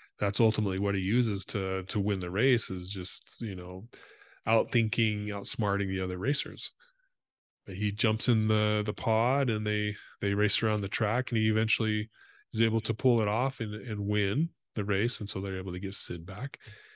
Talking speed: 200 wpm